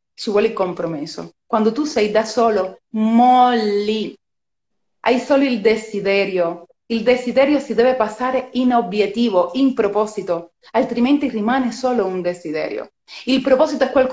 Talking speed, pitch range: 125 wpm, 200-275 Hz